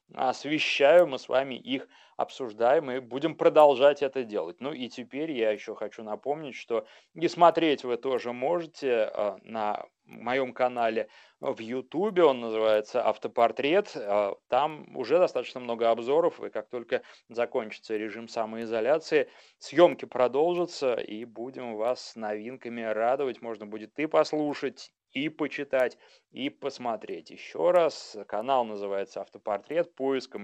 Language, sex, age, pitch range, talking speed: Russian, male, 30-49, 115-150 Hz, 130 wpm